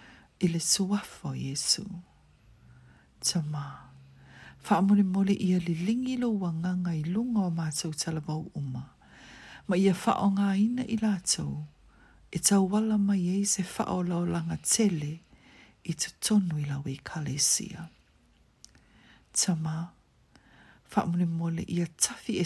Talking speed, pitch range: 90 wpm, 160-205 Hz